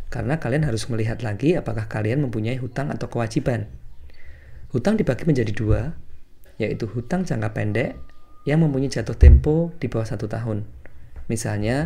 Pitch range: 100-135 Hz